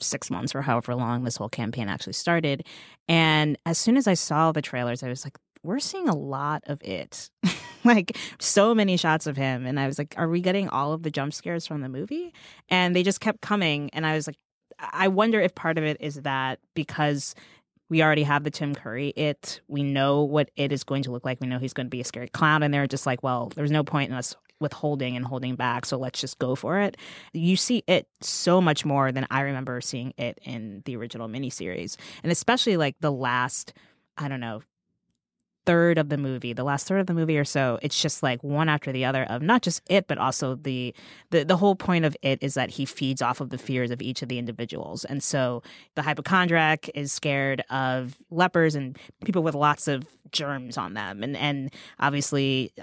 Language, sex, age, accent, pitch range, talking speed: English, female, 20-39, American, 130-160 Hz, 225 wpm